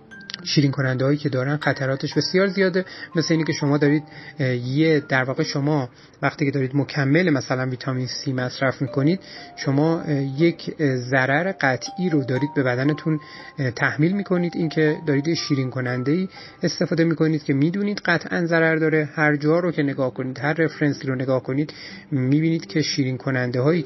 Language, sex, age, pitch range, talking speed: Persian, male, 30-49, 140-165 Hz, 150 wpm